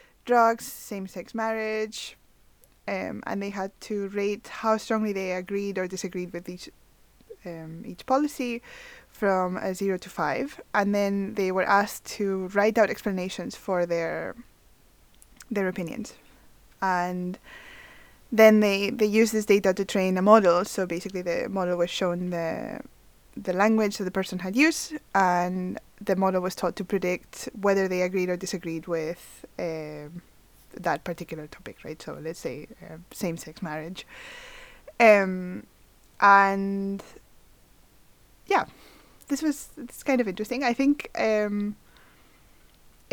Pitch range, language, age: 185-220 Hz, English, 20-39